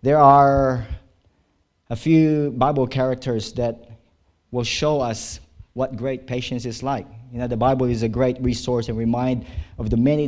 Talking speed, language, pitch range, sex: 165 wpm, English, 110-130 Hz, male